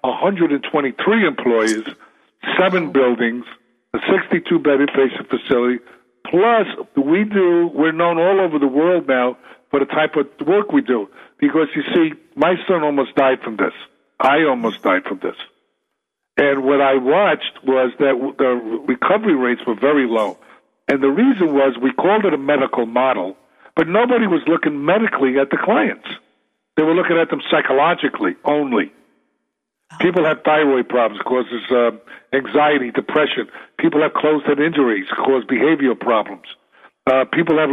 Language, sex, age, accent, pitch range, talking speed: English, male, 60-79, American, 130-165 Hz, 150 wpm